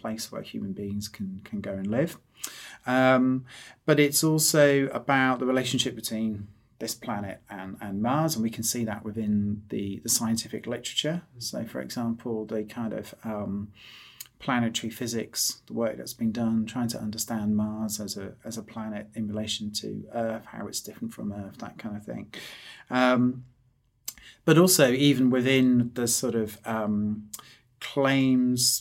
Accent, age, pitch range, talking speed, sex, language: British, 30-49, 105-125 Hz, 160 wpm, male, Danish